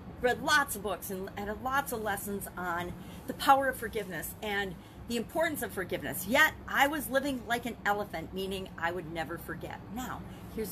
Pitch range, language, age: 190-270 Hz, English, 40-59